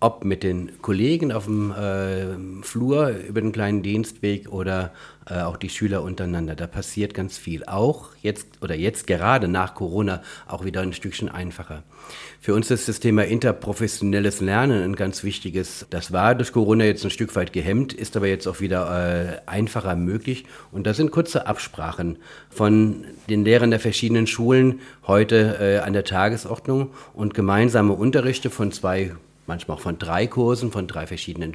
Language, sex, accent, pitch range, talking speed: German, male, German, 95-115 Hz, 170 wpm